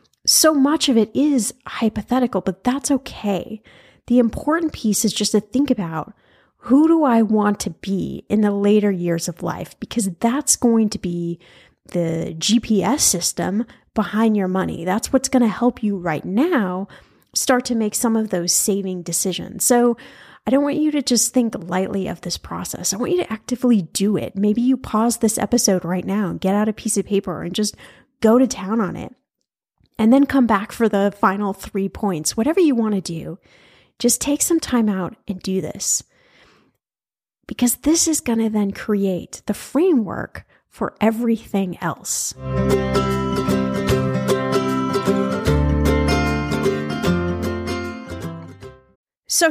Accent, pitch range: American, 185-245 Hz